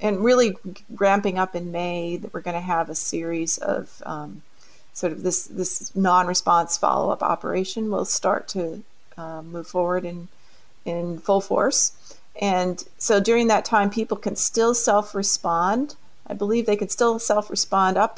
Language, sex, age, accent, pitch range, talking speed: English, female, 40-59, American, 175-205 Hz, 165 wpm